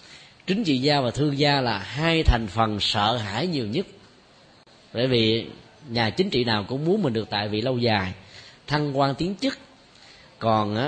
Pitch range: 115-150 Hz